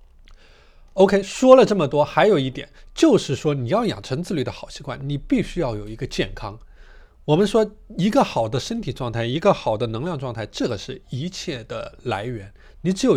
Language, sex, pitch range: Chinese, male, 110-145 Hz